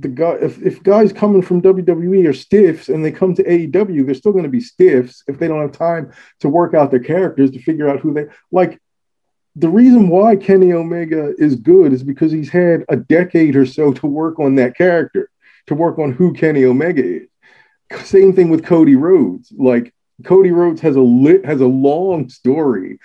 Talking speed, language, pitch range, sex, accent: 205 wpm, English, 125-180 Hz, male, American